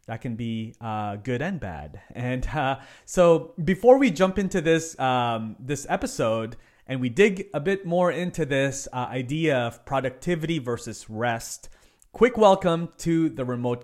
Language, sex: English, male